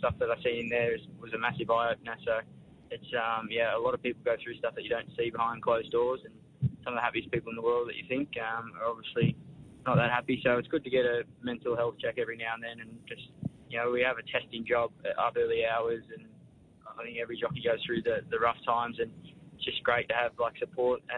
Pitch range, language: 120-135 Hz, English